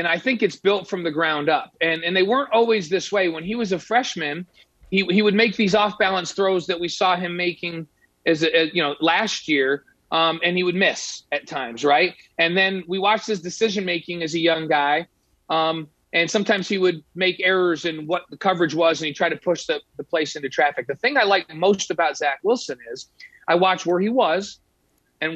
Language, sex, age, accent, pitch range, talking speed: English, male, 40-59, American, 165-205 Hz, 225 wpm